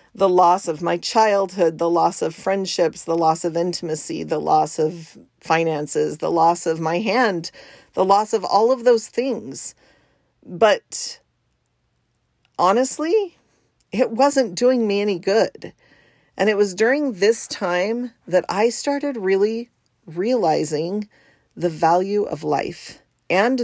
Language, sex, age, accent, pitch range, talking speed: English, female, 40-59, American, 175-230 Hz, 135 wpm